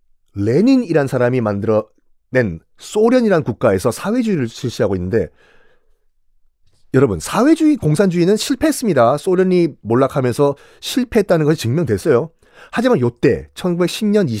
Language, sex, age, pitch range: Korean, male, 40-59, 120-200 Hz